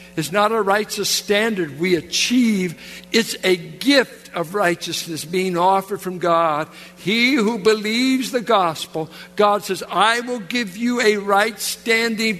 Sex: male